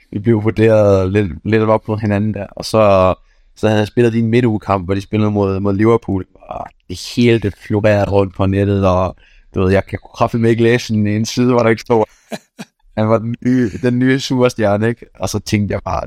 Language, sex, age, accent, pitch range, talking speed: Danish, male, 20-39, native, 100-115 Hz, 230 wpm